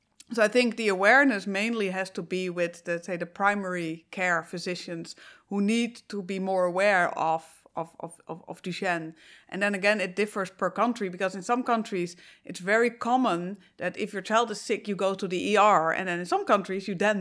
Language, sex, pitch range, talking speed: English, female, 180-215 Hz, 205 wpm